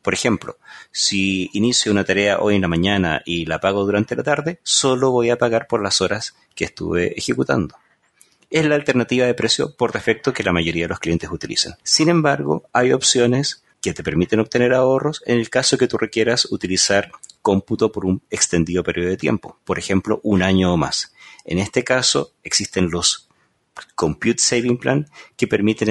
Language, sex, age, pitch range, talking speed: Spanish, male, 30-49, 95-125 Hz, 185 wpm